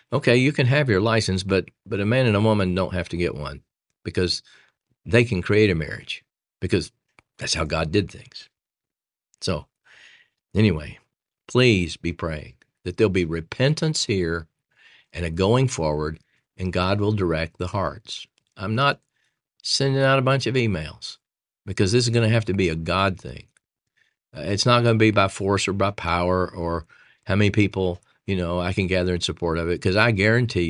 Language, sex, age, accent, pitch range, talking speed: English, male, 50-69, American, 85-115 Hz, 185 wpm